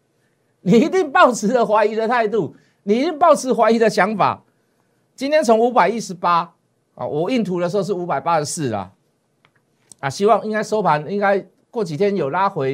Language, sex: Chinese, male